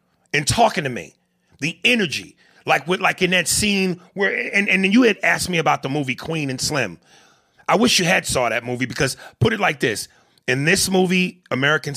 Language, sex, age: English, male, 30-49